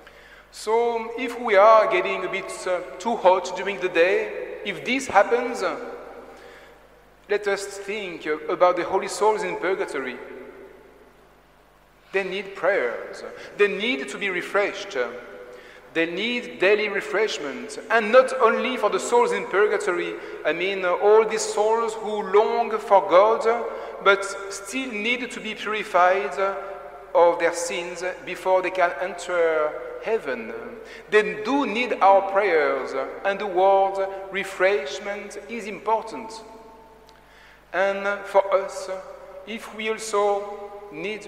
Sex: male